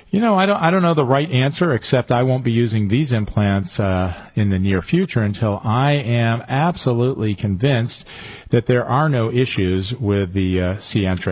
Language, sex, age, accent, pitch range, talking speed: English, male, 40-59, American, 100-135 Hz, 185 wpm